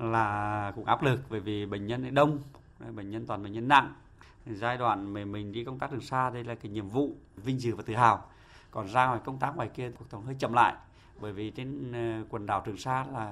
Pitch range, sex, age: 105-130 Hz, male, 20-39